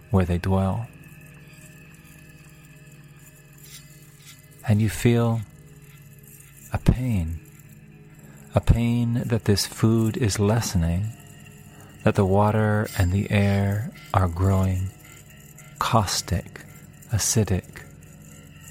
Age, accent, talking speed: 40-59, American, 80 wpm